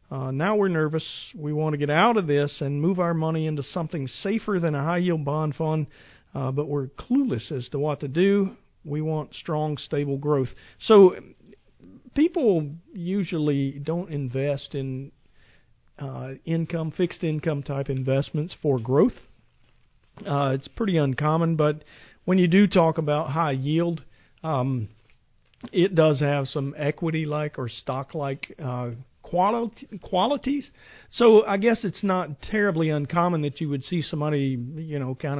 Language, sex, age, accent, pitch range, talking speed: English, male, 50-69, American, 140-165 Hz, 150 wpm